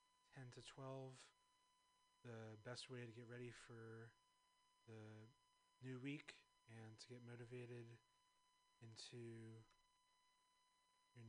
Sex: male